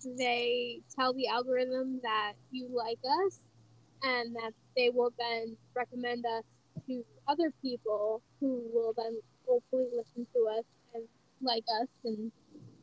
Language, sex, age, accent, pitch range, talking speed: English, female, 10-29, American, 235-290 Hz, 135 wpm